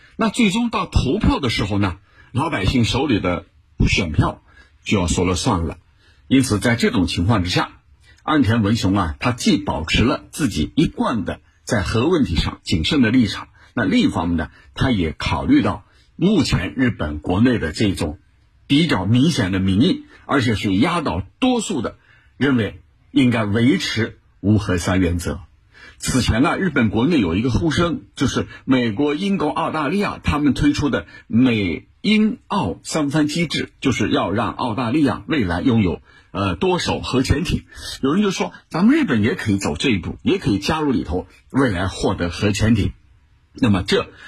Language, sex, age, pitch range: Chinese, male, 60-79, 95-145 Hz